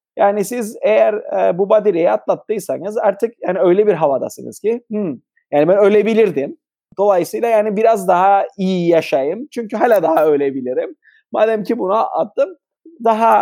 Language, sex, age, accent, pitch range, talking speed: Turkish, male, 30-49, native, 180-260 Hz, 140 wpm